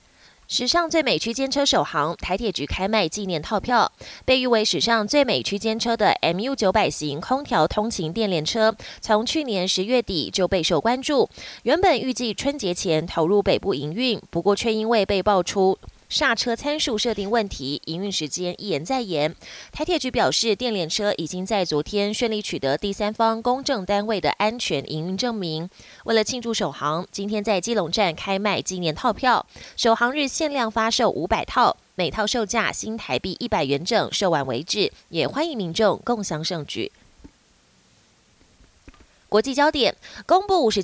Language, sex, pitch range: Chinese, female, 180-240 Hz